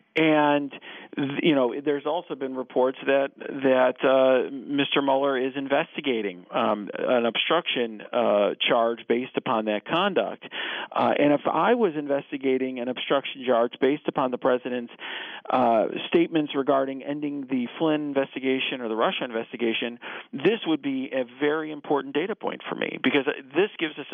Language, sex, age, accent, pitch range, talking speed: English, male, 40-59, American, 125-150 Hz, 150 wpm